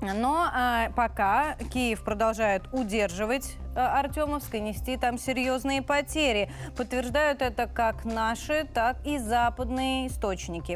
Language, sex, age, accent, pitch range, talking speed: Russian, female, 20-39, native, 220-265 Hz, 105 wpm